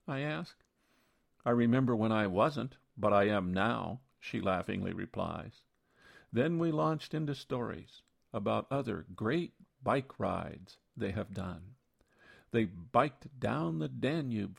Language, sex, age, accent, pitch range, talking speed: English, male, 50-69, American, 105-140 Hz, 130 wpm